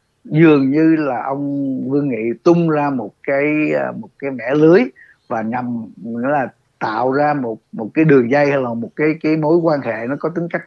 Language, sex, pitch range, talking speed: Vietnamese, male, 125-160 Hz, 200 wpm